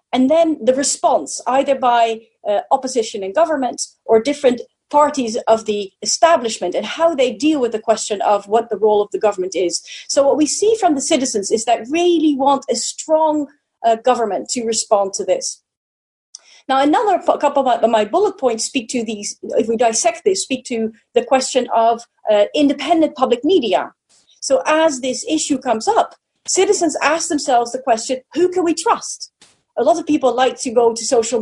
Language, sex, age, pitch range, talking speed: English, female, 40-59, 225-305 Hz, 185 wpm